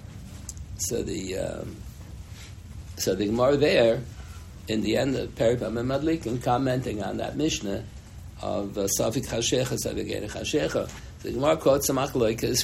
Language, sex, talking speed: English, male, 140 wpm